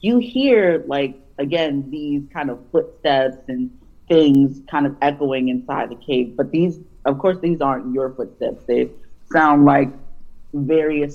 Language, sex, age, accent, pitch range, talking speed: English, female, 30-49, American, 130-160 Hz, 150 wpm